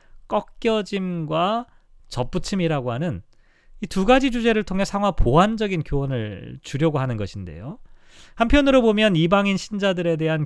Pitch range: 135-215 Hz